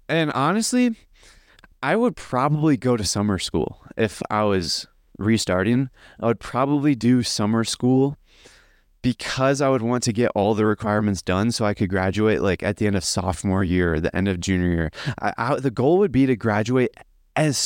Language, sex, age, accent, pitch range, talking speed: English, male, 20-39, American, 105-130 Hz, 185 wpm